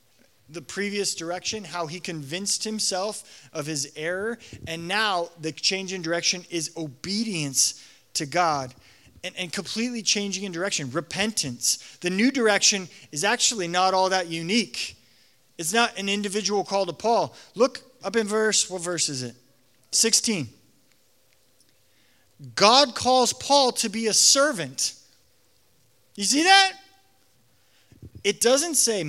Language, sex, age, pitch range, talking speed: English, male, 30-49, 130-215 Hz, 135 wpm